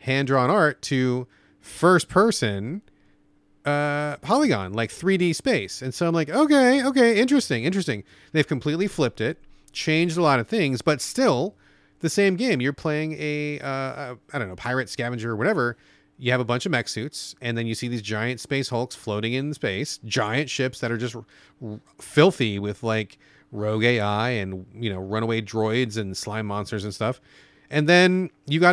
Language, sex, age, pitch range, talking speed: English, male, 30-49, 110-155 Hz, 170 wpm